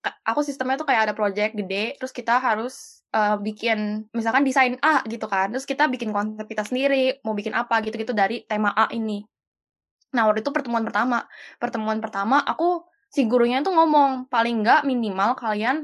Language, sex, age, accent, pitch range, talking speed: Indonesian, female, 10-29, native, 210-280 Hz, 180 wpm